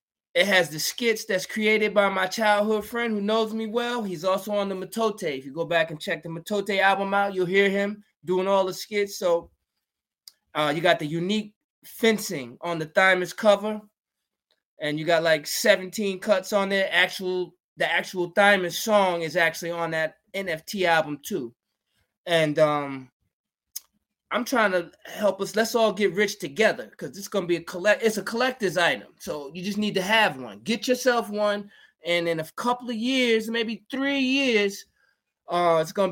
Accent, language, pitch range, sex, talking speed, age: American, English, 170-210 Hz, male, 185 wpm, 20-39